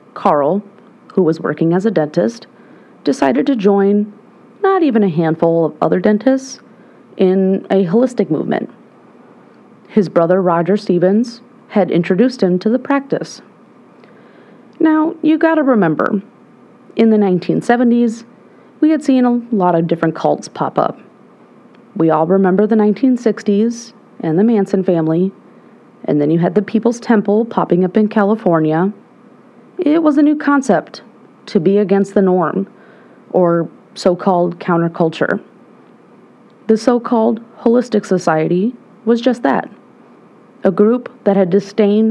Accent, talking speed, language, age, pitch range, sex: American, 135 wpm, English, 30-49, 180-235 Hz, female